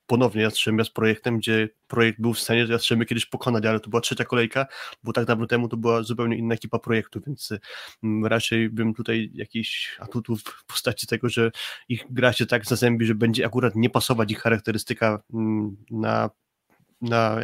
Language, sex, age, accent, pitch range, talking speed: Polish, male, 20-39, native, 110-125 Hz, 175 wpm